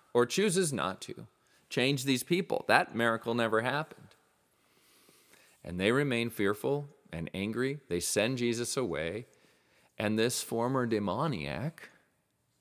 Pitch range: 105-155 Hz